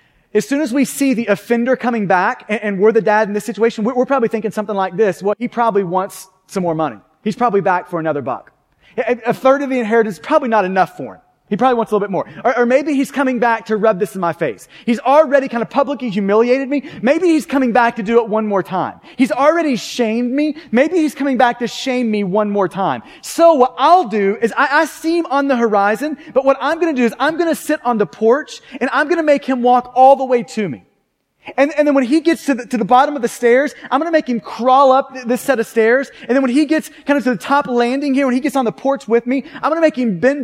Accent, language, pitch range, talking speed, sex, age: American, English, 225-280 Hz, 275 wpm, male, 30-49